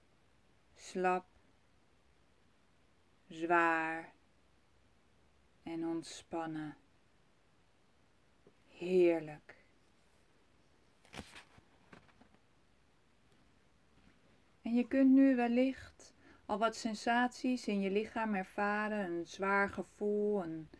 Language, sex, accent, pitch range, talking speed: Dutch, female, Dutch, 165-215 Hz, 60 wpm